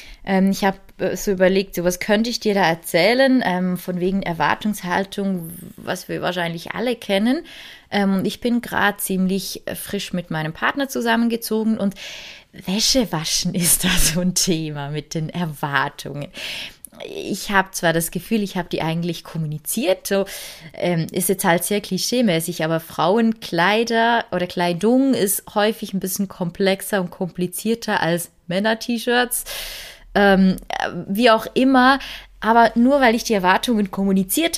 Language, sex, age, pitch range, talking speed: German, female, 20-39, 170-220 Hz, 140 wpm